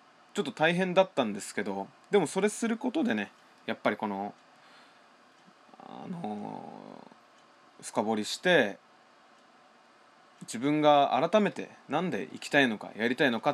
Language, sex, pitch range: Japanese, male, 110-190 Hz